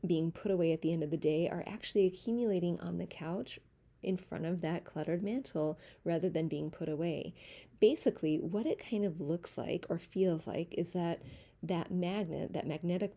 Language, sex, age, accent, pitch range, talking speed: English, female, 30-49, American, 160-200 Hz, 190 wpm